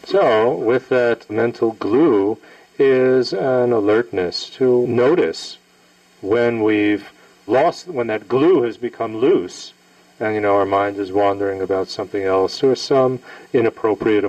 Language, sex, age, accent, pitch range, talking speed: English, male, 50-69, American, 85-120 Hz, 135 wpm